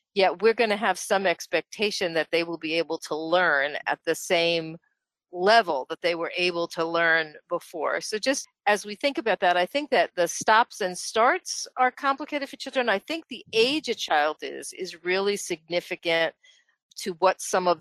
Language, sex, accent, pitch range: English, female, American, 175-230 Hz